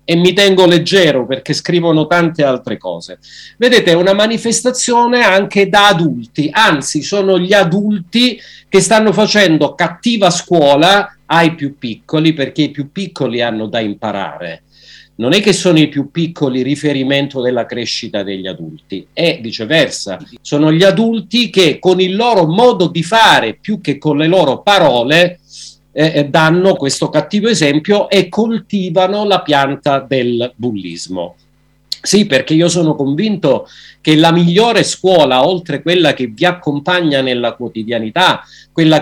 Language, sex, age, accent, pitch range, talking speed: Italian, male, 50-69, native, 145-195 Hz, 140 wpm